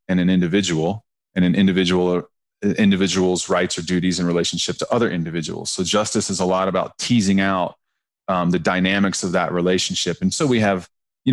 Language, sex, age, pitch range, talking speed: English, male, 30-49, 90-105 Hz, 180 wpm